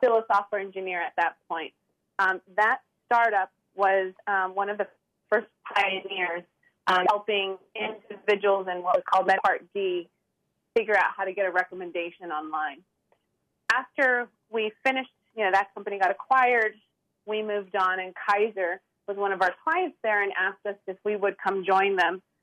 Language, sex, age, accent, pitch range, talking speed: English, female, 30-49, American, 190-220 Hz, 170 wpm